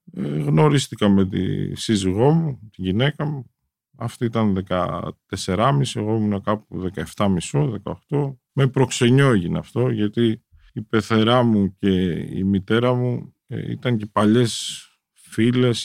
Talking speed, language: 115 wpm, Greek